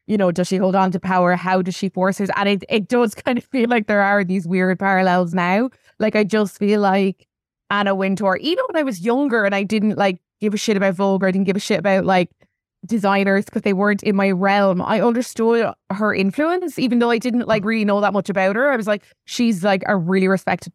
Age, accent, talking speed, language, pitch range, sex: 20-39, Irish, 245 wpm, English, 190-220 Hz, female